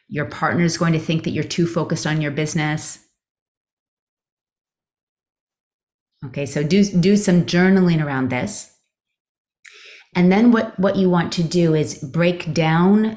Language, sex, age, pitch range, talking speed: English, female, 30-49, 145-175 Hz, 145 wpm